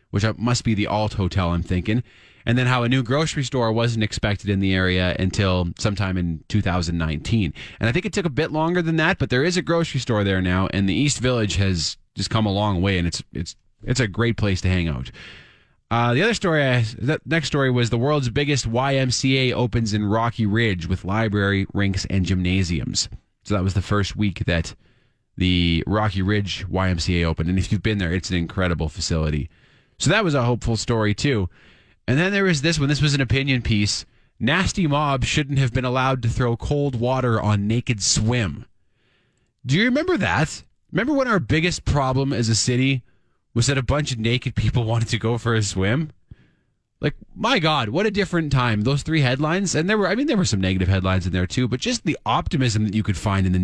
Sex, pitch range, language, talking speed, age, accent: male, 95-135 Hz, English, 215 wpm, 20-39, American